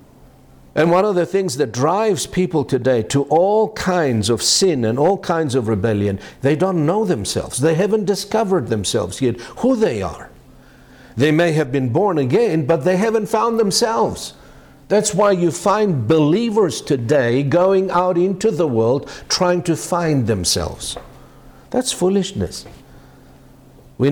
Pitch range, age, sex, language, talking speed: 125-185 Hz, 60-79, male, English, 150 wpm